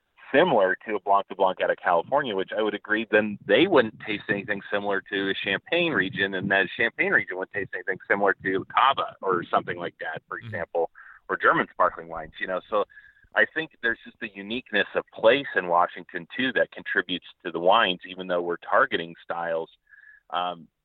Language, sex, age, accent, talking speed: English, male, 30-49, American, 195 wpm